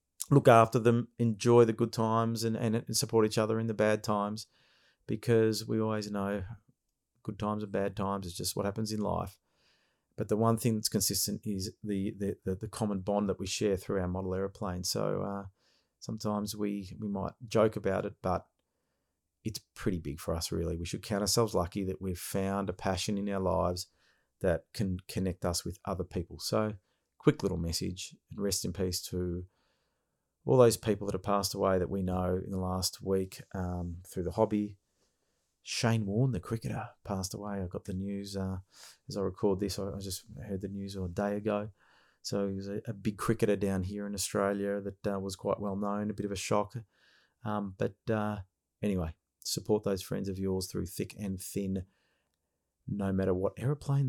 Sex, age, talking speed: male, 40-59, 195 wpm